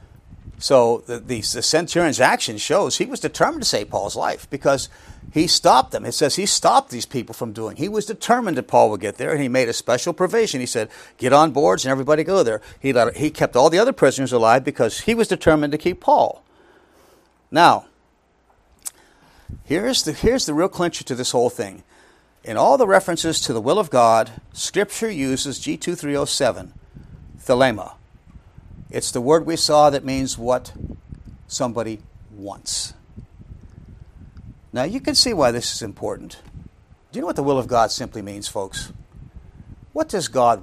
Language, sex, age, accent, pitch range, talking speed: English, male, 50-69, American, 115-185 Hz, 175 wpm